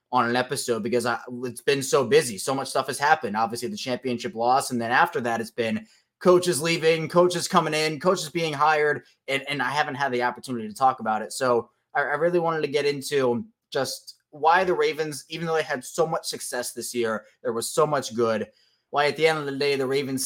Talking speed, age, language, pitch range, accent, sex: 230 wpm, 20-39, English, 125-165 Hz, American, male